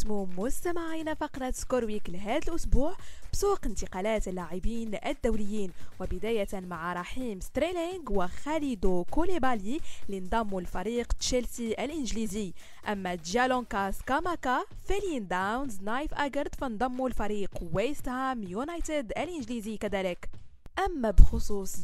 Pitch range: 200-290 Hz